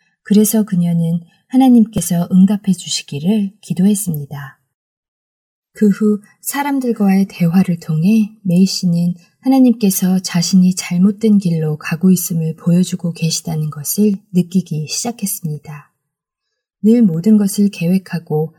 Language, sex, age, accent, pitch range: Korean, female, 20-39, native, 165-205 Hz